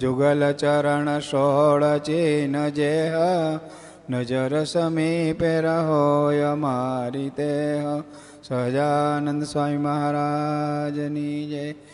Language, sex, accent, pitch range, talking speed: Gujarati, male, native, 145-190 Hz, 65 wpm